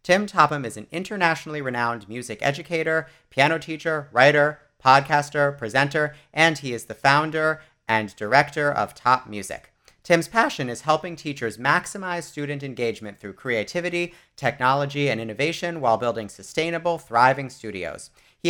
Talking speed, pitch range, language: 135 wpm, 115-155 Hz, English